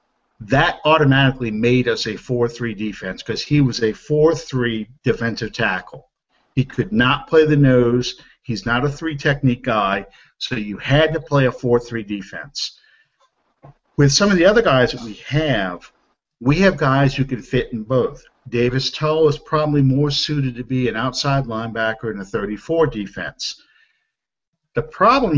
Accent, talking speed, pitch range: American, 170 wpm, 120-155 Hz